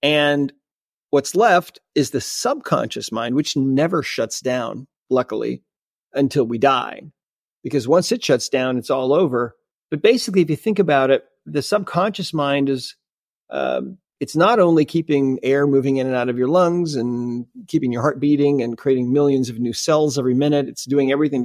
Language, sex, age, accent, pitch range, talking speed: English, male, 40-59, American, 125-150 Hz, 175 wpm